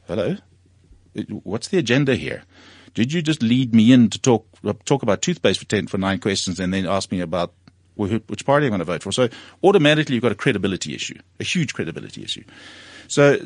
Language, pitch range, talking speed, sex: English, 90-125 Hz, 200 wpm, male